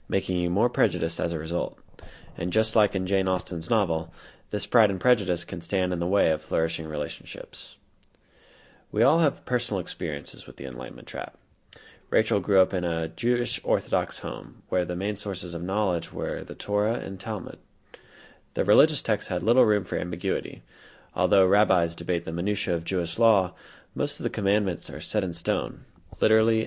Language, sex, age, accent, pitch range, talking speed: English, male, 20-39, American, 90-110 Hz, 180 wpm